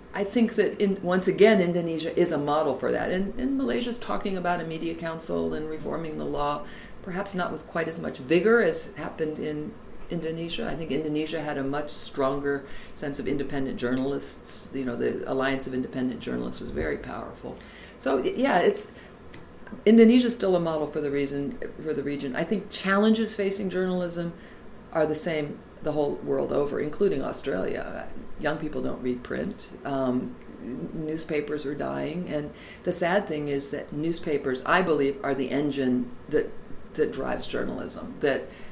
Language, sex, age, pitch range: English, female, 50-69, 140-185 Hz